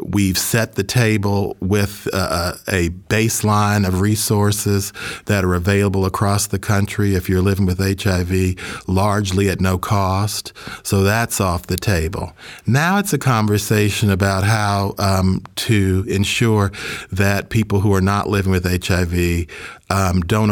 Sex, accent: male, American